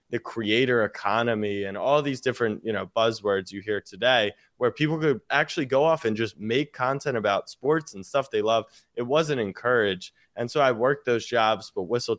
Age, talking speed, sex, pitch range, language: 20-39, 195 wpm, male, 105-125 Hz, English